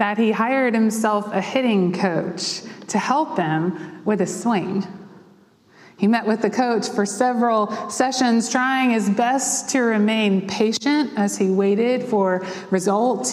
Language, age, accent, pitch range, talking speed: English, 30-49, American, 190-255 Hz, 145 wpm